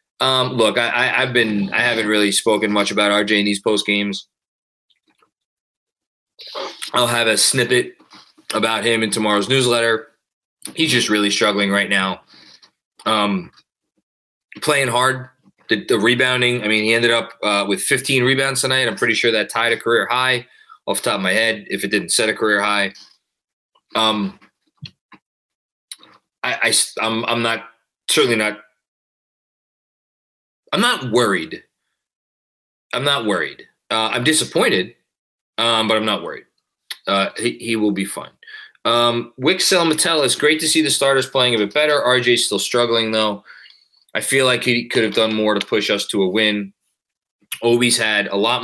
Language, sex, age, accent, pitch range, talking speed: English, male, 20-39, American, 105-125 Hz, 165 wpm